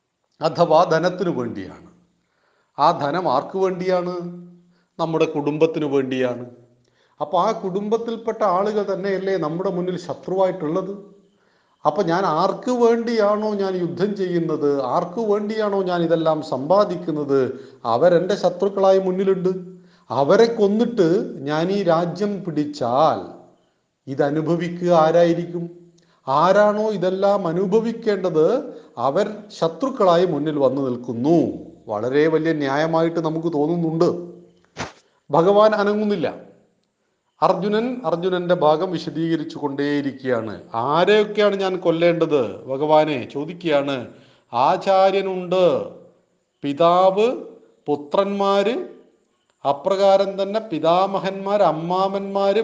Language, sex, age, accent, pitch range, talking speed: Malayalam, male, 40-59, native, 155-200 Hz, 80 wpm